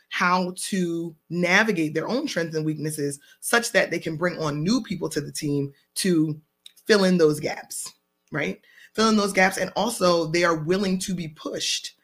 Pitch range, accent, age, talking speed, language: 155-190 Hz, American, 20-39, 185 wpm, English